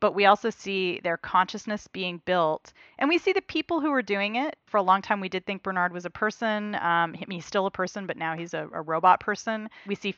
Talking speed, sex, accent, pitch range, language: 250 wpm, female, American, 170-210 Hz, English